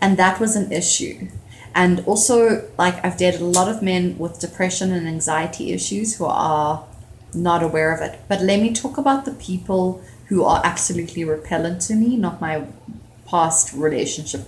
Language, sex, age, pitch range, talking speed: English, female, 20-39, 155-205 Hz, 175 wpm